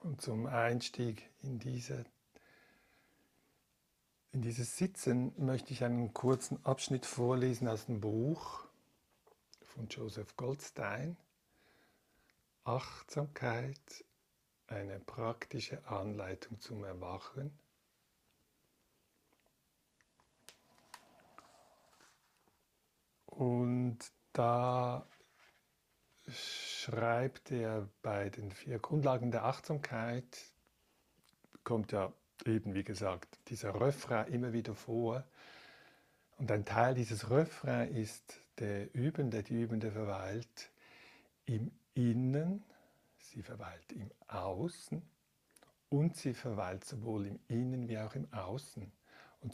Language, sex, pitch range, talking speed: German, male, 110-130 Hz, 90 wpm